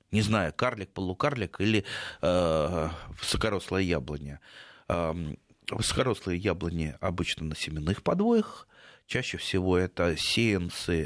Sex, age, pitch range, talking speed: male, 30-49, 85-115 Hz, 105 wpm